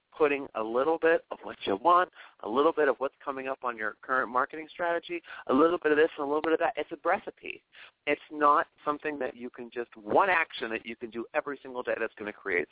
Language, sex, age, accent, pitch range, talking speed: English, male, 40-59, American, 130-205 Hz, 255 wpm